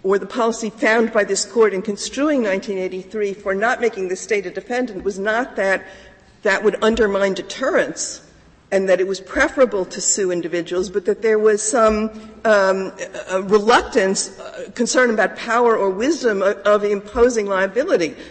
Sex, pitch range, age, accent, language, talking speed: female, 185-225 Hz, 50-69, American, English, 165 wpm